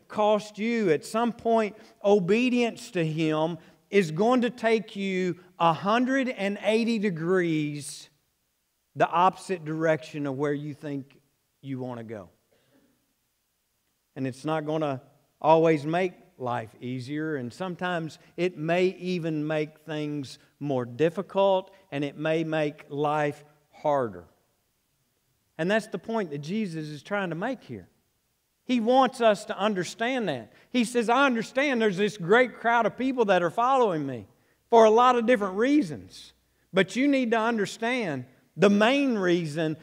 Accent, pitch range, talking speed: American, 145-210 Hz, 145 wpm